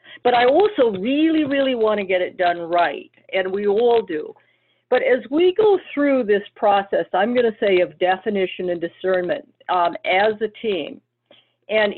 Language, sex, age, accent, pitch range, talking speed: English, female, 50-69, American, 195-255 Hz, 175 wpm